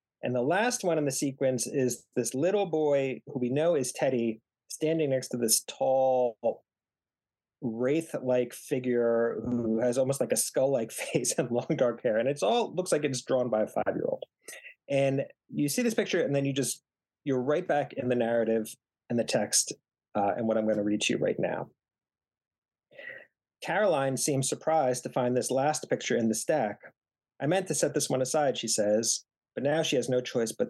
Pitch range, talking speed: 115-140 Hz, 200 wpm